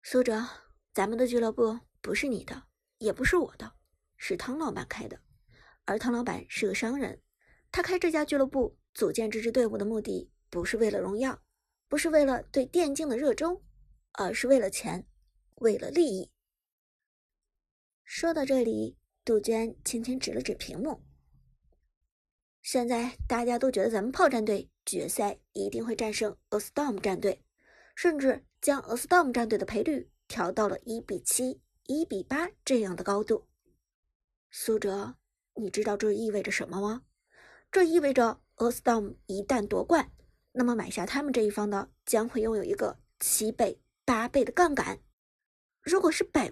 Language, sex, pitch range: Chinese, male, 215-280 Hz